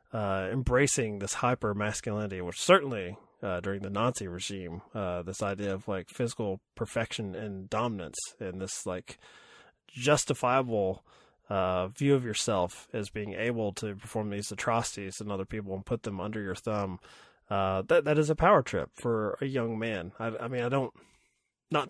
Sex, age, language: male, 20-39, English